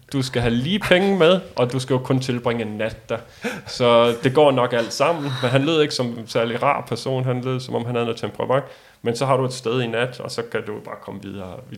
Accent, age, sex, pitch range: native, 30-49, male, 115-135 Hz